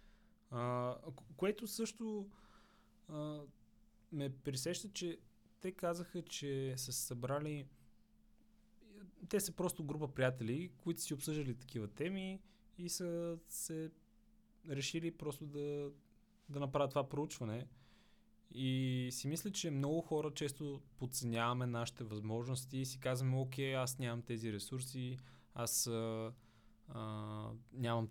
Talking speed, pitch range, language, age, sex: 115 wpm, 115-145 Hz, Bulgarian, 20-39, male